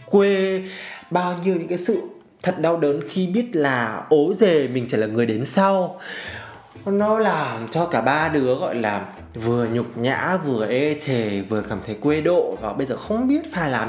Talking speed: 200 wpm